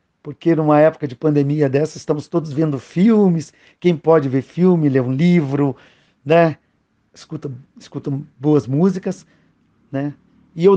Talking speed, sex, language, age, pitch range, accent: 140 wpm, male, Portuguese, 50-69, 135-170 Hz, Brazilian